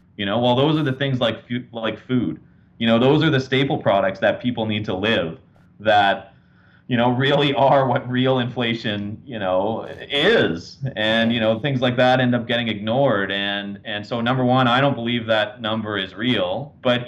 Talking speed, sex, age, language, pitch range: 195 wpm, male, 30-49, English, 110-130 Hz